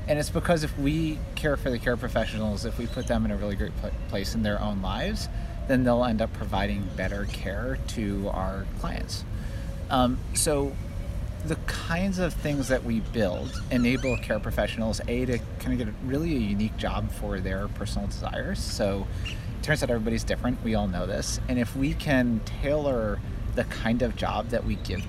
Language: English